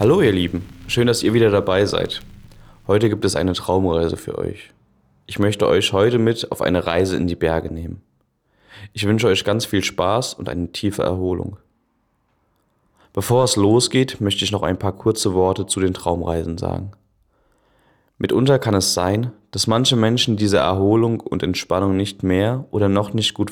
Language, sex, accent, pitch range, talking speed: German, male, German, 90-105 Hz, 175 wpm